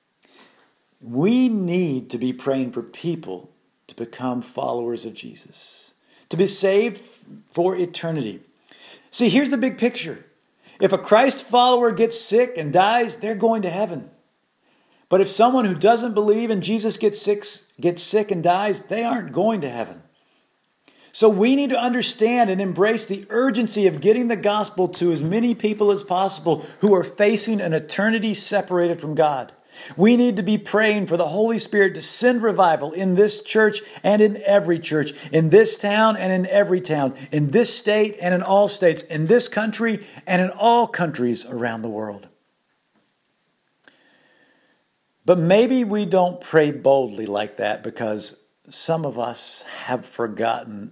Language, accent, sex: English, American, male